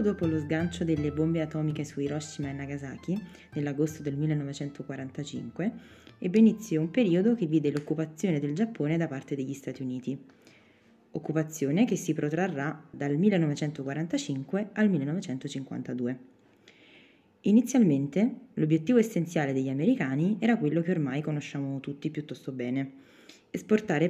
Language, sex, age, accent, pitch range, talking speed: Italian, female, 20-39, native, 140-195 Hz, 120 wpm